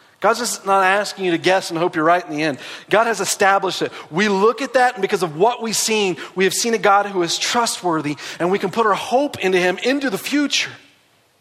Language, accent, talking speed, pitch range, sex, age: English, American, 245 wpm, 165-230 Hz, male, 40-59